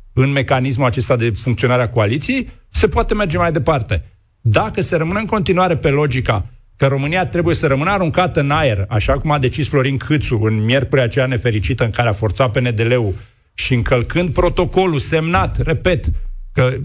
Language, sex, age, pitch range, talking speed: Romanian, male, 50-69, 120-165 Hz, 170 wpm